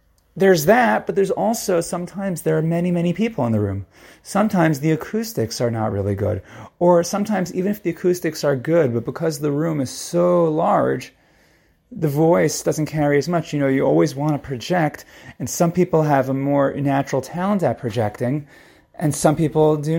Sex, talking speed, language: male, 190 wpm, English